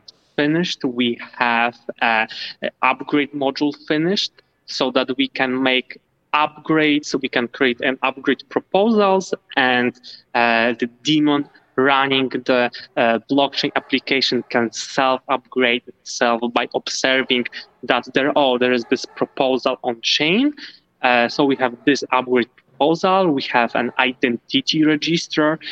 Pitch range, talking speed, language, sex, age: 125-150 Hz, 135 wpm, English, male, 20-39